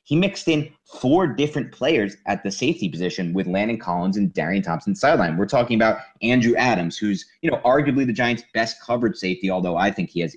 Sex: male